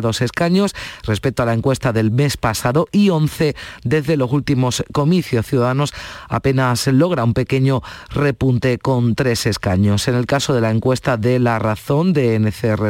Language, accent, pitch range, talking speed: Spanish, Spanish, 115-145 Hz, 165 wpm